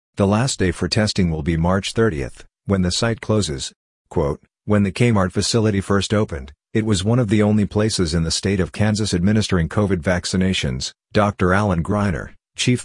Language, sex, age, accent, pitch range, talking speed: English, male, 50-69, American, 90-105 Hz, 180 wpm